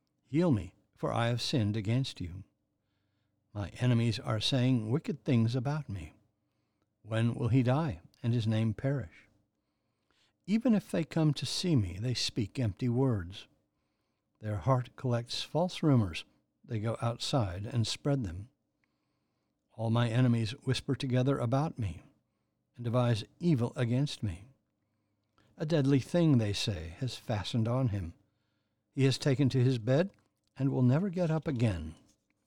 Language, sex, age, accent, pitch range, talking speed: English, male, 60-79, American, 105-135 Hz, 145 wpm